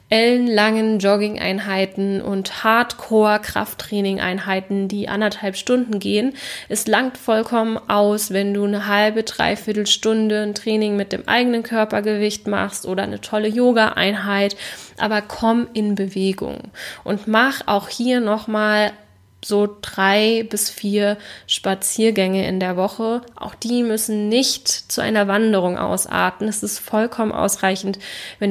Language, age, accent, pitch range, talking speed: German, 10-29, German, 195-225 Hz, 125 wpm